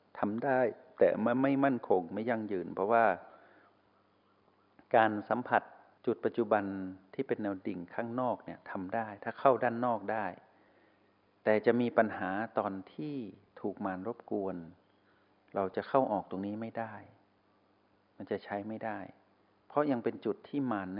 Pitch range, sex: 100-125 Hz, male